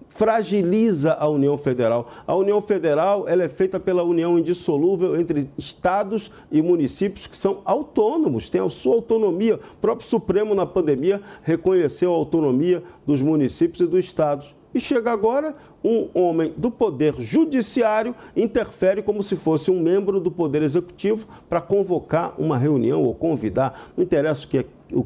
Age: 50-69